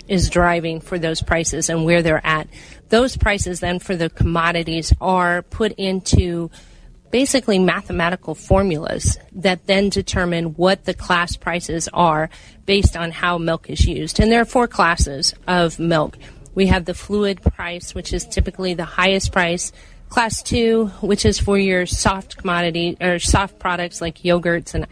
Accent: American